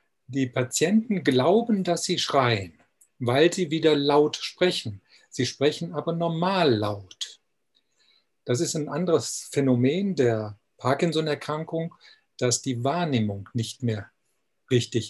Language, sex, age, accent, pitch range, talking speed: German, male, 50-69, German, 120-165 Hz, 115 wpm